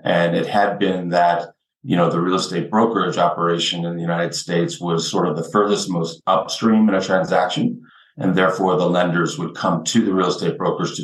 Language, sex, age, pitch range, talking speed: English, male, 40-59, 85-105 Hz, 205 wpm